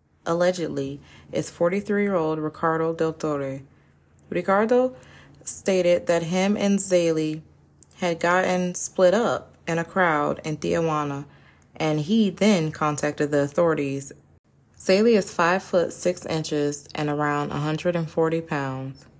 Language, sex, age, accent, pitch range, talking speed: English, female, 20-39, American, 140-175 Hz, 130 wpm